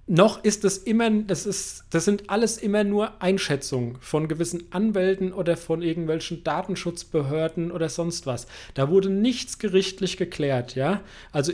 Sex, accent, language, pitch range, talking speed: male, German, German, 140-185 Hz, 155 wpm